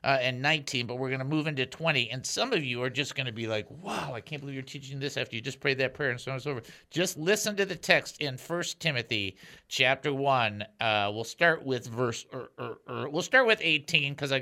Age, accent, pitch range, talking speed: 50-69, American, 130-180 Hz, 260 wpm